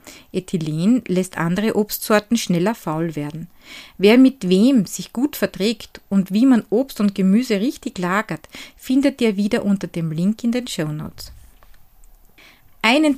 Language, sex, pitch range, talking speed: German, female, 175-240 Hz, 145 wpm